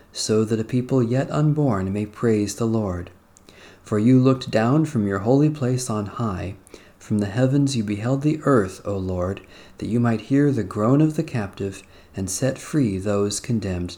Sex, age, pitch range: male, 40-59, 95-125 Hz